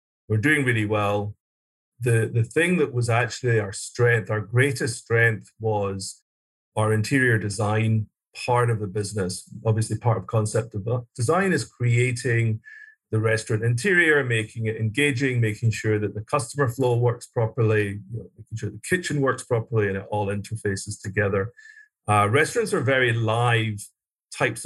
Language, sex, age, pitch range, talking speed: English, male, 40-59, 110-130 Hz, 150 wpm